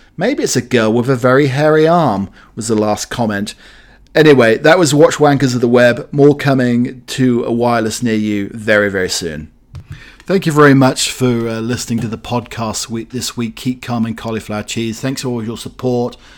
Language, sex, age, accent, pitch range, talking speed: English, male, 40-59, British, 105-125 Hz, 195 wpm